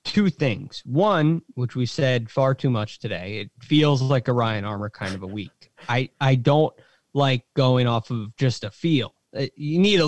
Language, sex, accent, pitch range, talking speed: English, male, American, 120-155 Hz, 195 wpm